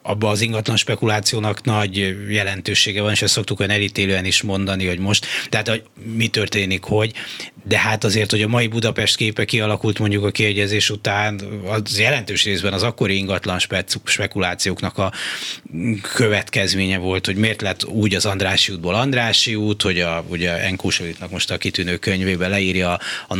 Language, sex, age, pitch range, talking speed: Hungarian, male, 30-49, 95-110 Hz, 155 wpm